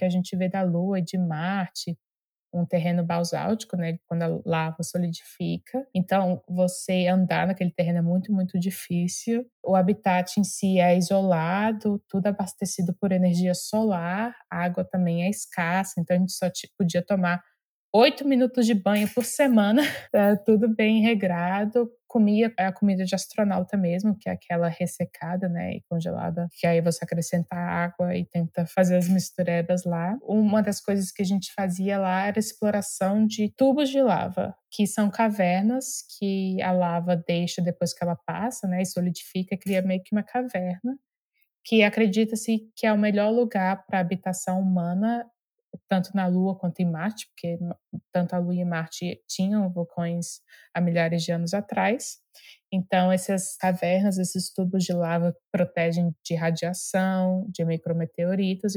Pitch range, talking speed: 175-205 Hz, 160 wpm